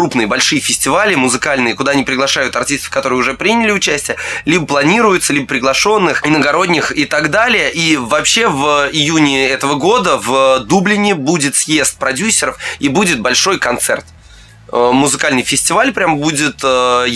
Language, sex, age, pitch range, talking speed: Russian, male, 20-39, 120-150 Hz, 140 wpm